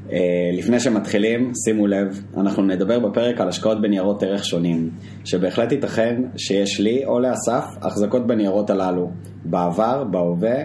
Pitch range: 95-115 Hz